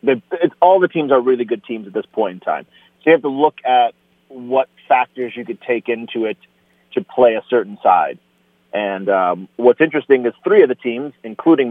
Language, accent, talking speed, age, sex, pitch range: English, American, 205 wpm, 40-59, male, 110-130 Hz